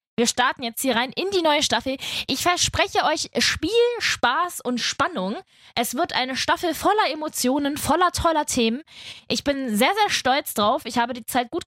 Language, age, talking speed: German, 20-39, 185 wpm